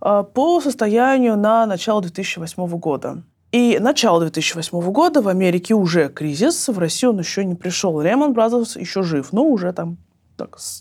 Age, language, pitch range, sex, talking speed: 20-39, Russian, 170-235 Hz, female, 155 wpm